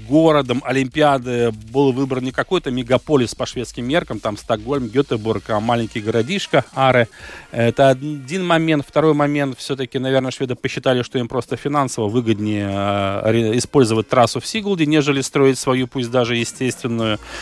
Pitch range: 120-145 Hz